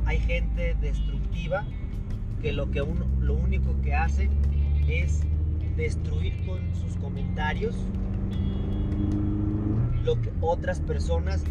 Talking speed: 95 wpm